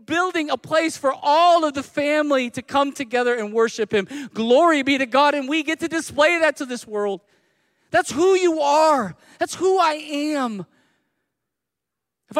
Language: English